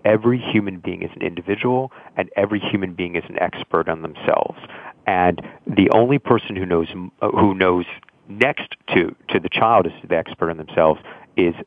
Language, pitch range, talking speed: English, 90-110 Hz, 180 wpm